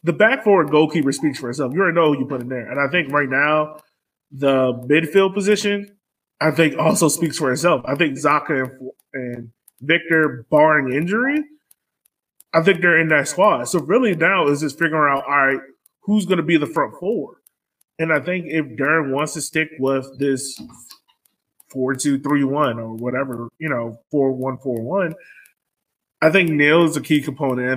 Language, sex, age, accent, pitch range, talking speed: English, male, 20-39, American, 140-180 Hz, 175 wpm